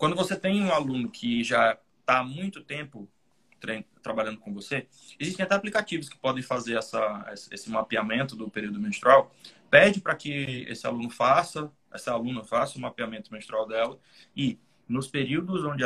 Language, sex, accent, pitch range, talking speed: Portuguese, male, Brazilian, 125-170 Hz, 165 wpm